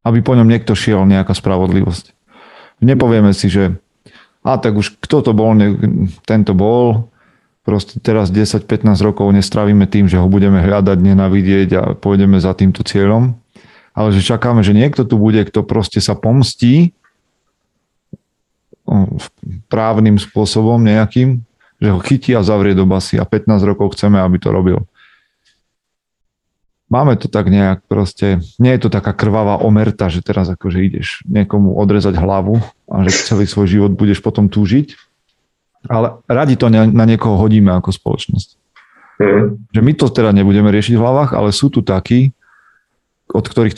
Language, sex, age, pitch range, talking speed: Slovak, male, 40-59, 95-115 Hz, 150 wpm